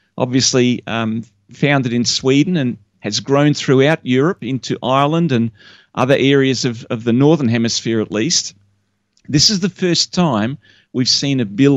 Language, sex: English, male